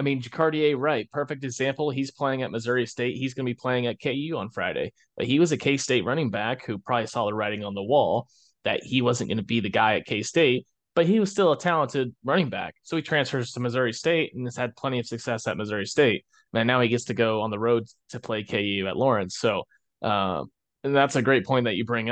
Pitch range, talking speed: 110-130 Hz, 250 wpm